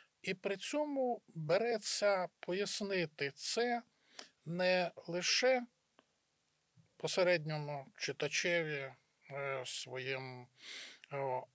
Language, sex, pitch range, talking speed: Ukrainian, male, 150-200 Hz, 55 wpm